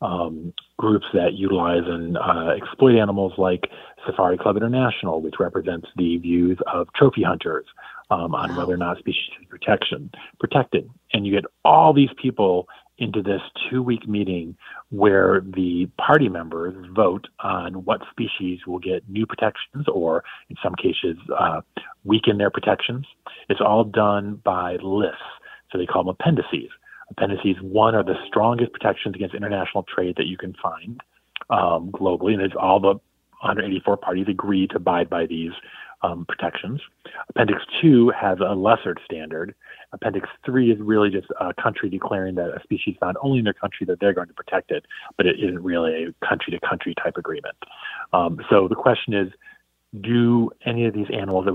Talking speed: 165 wpm